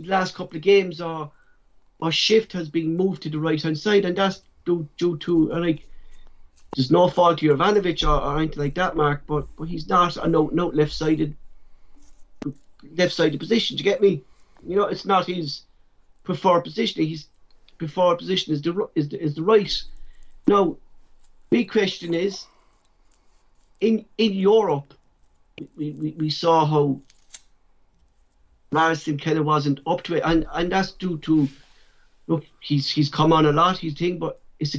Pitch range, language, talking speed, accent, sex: 145-175 Hz, English, 175 wpm, British, male